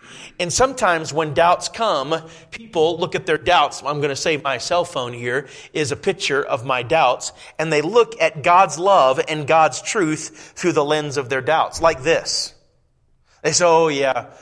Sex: male